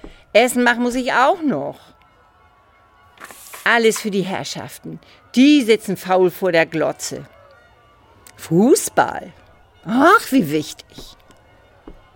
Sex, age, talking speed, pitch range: female, 50-69, 100 wpm, 150-205 Hz